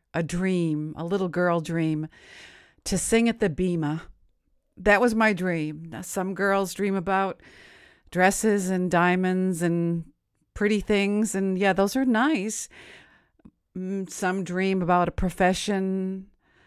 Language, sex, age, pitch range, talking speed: English, female, 50-69, 160-205 Hz, 125 wpm